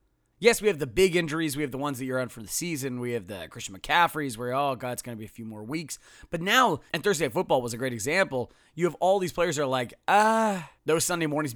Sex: male